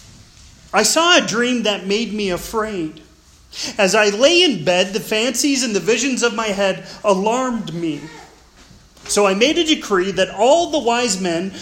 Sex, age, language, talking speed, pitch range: male, 30-49, English, 170 wpm, 170-245 Hz